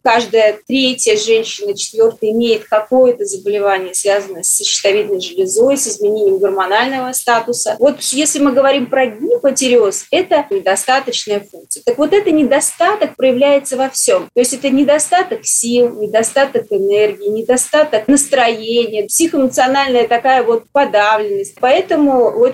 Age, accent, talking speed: 30-49, native, 120 wpm